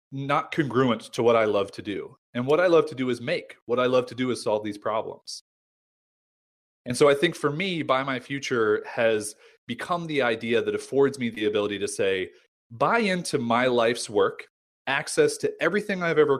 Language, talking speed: English, 200 wpm